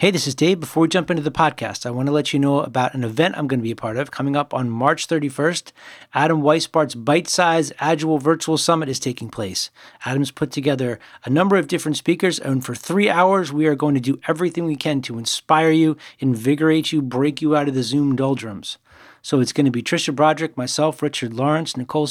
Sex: male